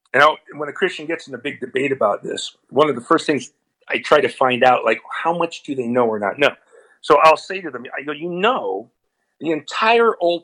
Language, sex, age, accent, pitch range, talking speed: English, male, 50-69, American, 130-200 Hz, 240 wpm